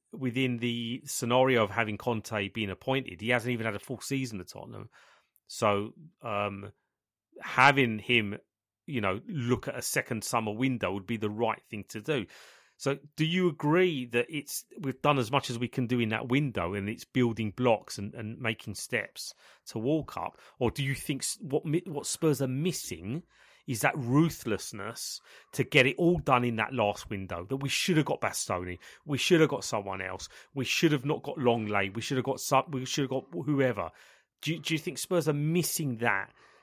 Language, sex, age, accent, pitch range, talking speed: English, male, 30-49, British, 120-170 Hz, 200 wpm